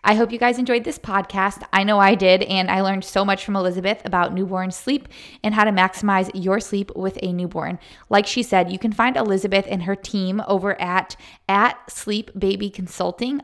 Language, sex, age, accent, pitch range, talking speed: English, female, 20-39, American, 190-220 Hz, 205 wpm